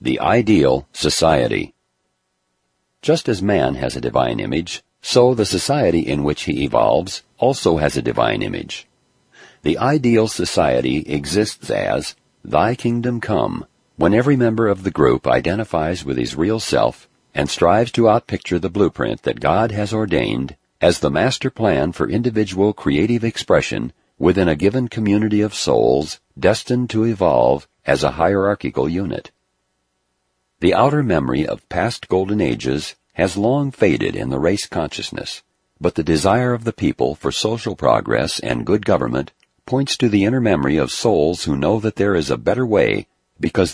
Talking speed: 155 wpm